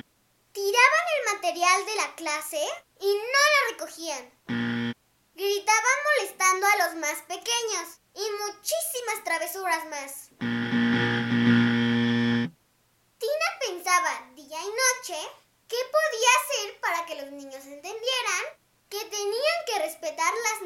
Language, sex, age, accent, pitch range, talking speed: Spanish, male, 20-39, Mexican, 305-415 Hz, 110 wpm